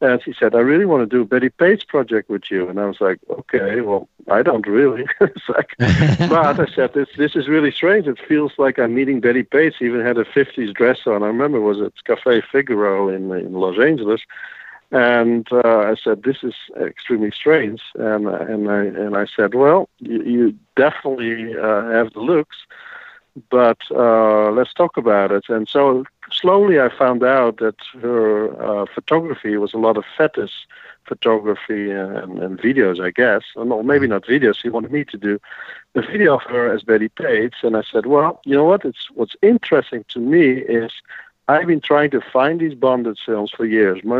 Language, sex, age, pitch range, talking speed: English, male, 50-69, 110-140 Hz, 200 wpm